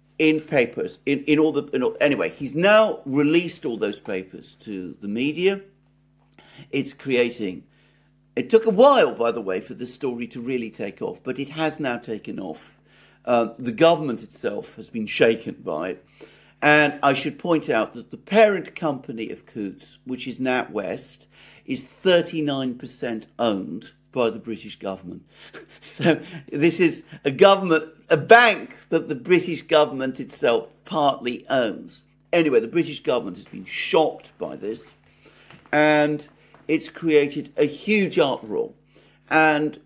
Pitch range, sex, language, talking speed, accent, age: 125-165 Hz, male, English, 150 wpm, British, 50-69